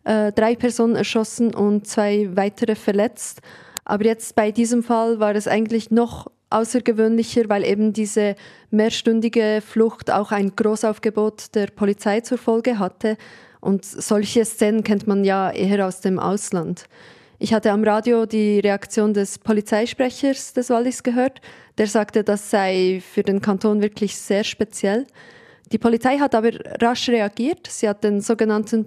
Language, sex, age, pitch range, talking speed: German, female, 20-39, 205-230 Hz, 150 wpm